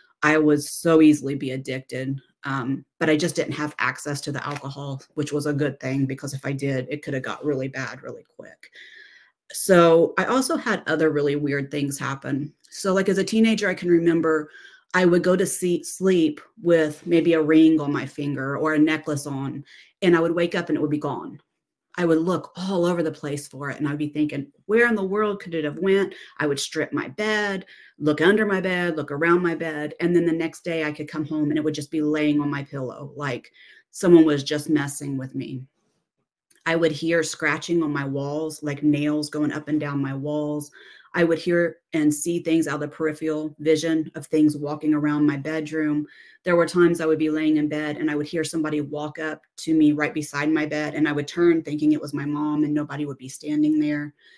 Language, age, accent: English, 40-59, American